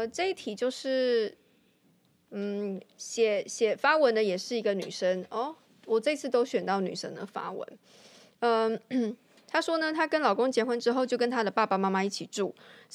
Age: 20-39